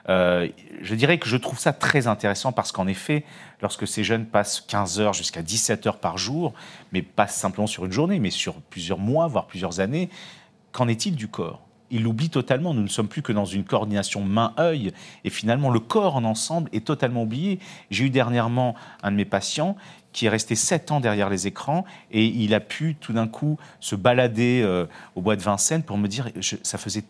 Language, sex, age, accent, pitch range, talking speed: French, male, 40-59, French, 105-150 Hz, 215 wpm